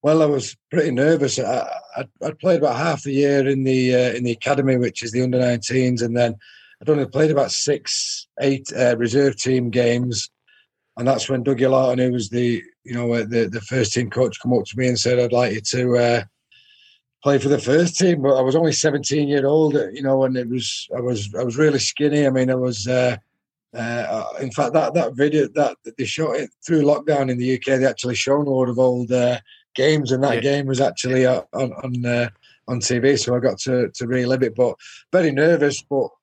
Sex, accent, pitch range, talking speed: male, British, 125-140 Hz, 225 wpm